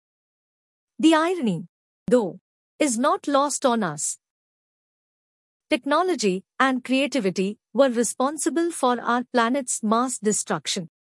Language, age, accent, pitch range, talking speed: English, 50-69, Indian, 225-300 Hz, 95 wpm